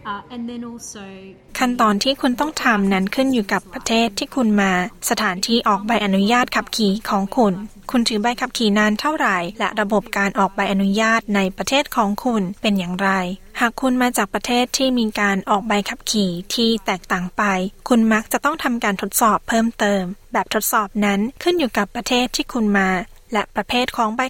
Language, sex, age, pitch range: Thai, female, 20-39, 200-240 Hz